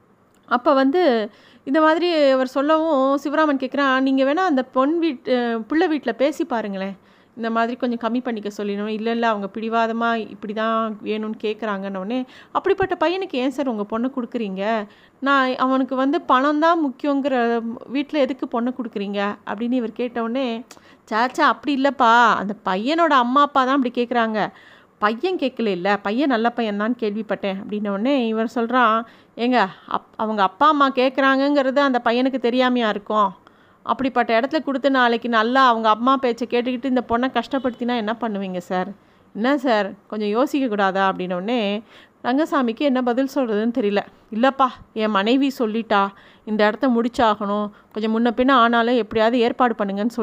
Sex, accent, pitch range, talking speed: female, native, 220-270 Hz, 145 wpm